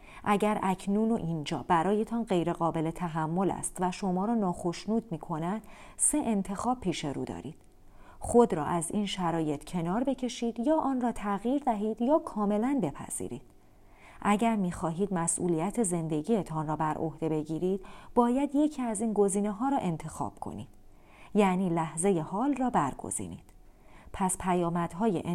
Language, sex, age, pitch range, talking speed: Persian, female, 40-59, 165-230 Hz, 135 wpm